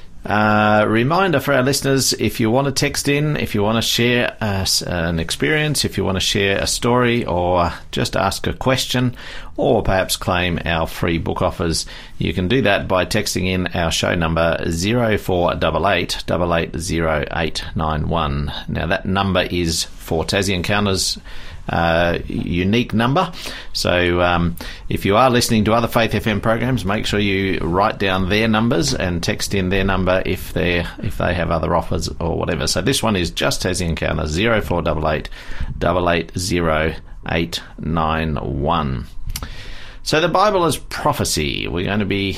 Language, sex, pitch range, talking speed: English, male, 85-110 Hz, 165 wpm